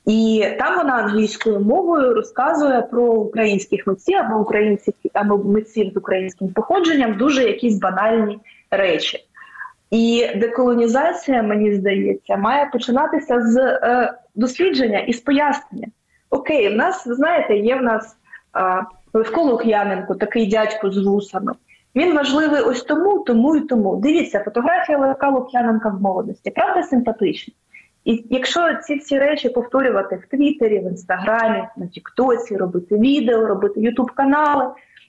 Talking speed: 130 wpm